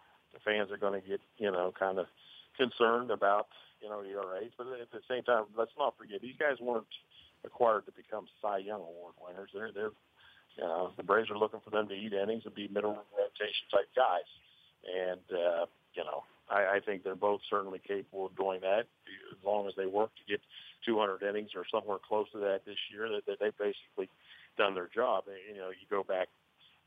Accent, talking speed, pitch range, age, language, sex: American, 210 wpm, 95-120 Hz, 50-69, English, male